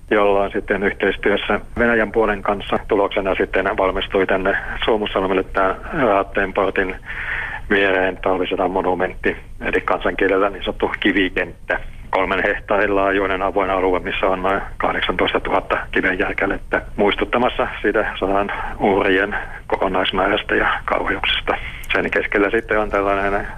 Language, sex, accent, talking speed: Finnish, male, native, 105 wpm